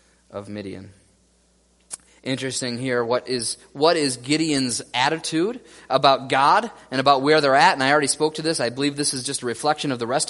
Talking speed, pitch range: 190 wpm, 115-150 Hz